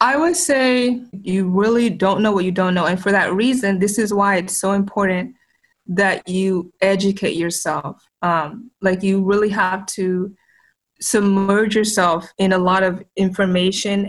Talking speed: 160 wpm